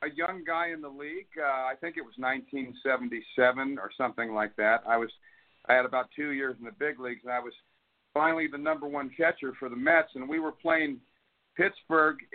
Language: English